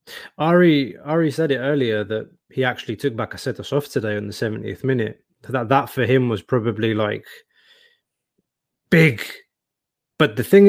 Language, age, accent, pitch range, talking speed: English, 20-39, British, 130-170 Hz, 150 wpm